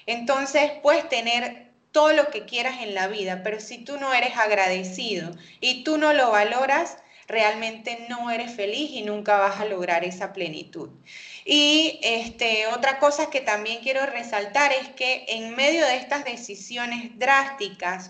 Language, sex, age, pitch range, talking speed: Spanish, female, 20-39, 210-280 Hz, 155 wpm